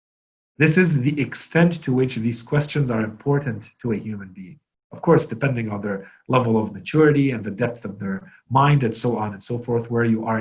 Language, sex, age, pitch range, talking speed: English, male, 40-59, 110-150 Hz, 215 wpm